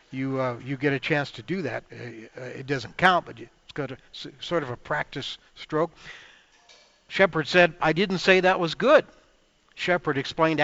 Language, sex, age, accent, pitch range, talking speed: English, male, 60-79, American, 140-180 Hz, 170 wpm